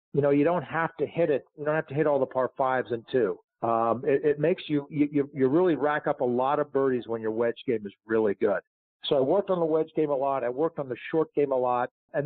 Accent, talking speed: American, 285 wpm